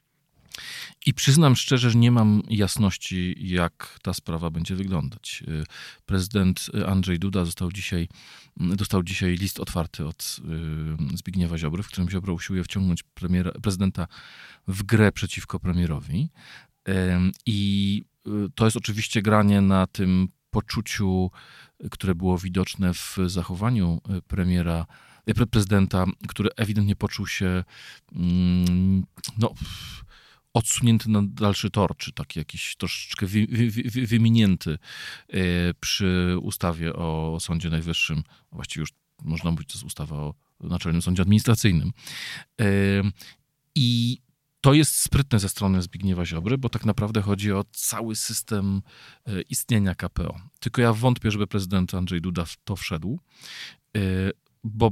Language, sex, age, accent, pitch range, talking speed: Polish, male, 40-59, native, 90-115 Hz, 120 wpm